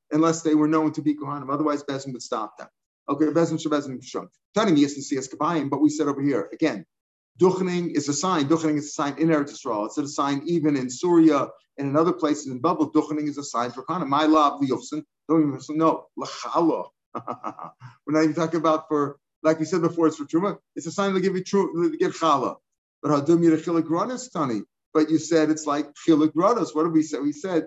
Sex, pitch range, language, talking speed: male, 150-170 Hz, English, 190 wpm